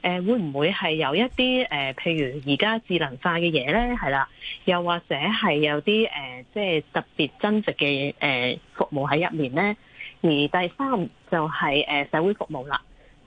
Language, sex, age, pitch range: Chinese, female, 20-39, 150-210 Hz